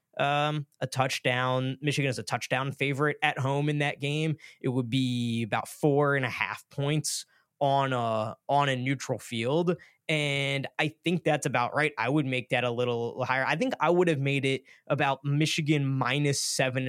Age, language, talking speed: 20-39, English, 185 wpm